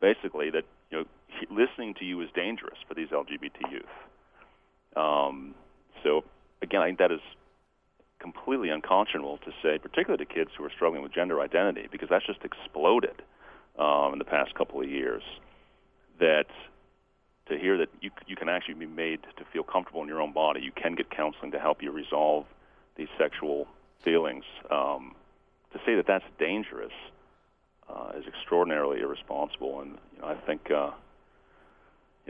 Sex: male